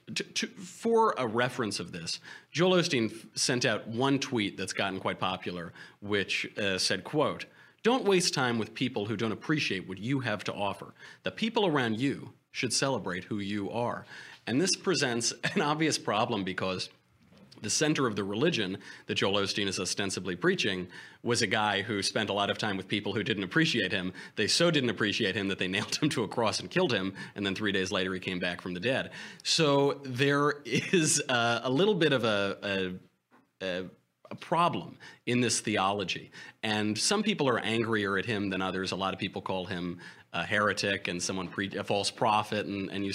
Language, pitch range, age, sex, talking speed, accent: English, 100-135 Hz, 30-49, male, 195 wpm, American